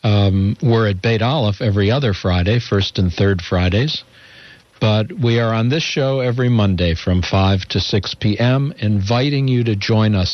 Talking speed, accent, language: 175 wpm, American, English